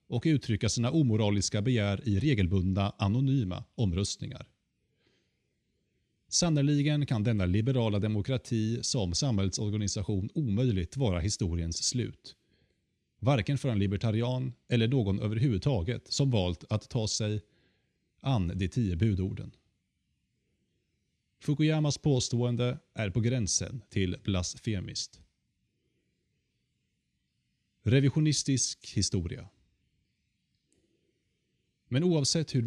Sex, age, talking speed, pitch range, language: male, 30-49, 90 wpm, 100-135 Hz, Swedish